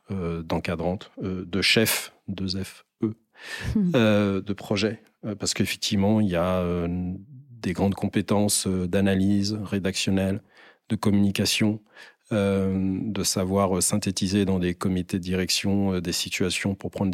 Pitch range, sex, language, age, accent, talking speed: 90-100 Hz, male, French, 40-59, French, 145 wpm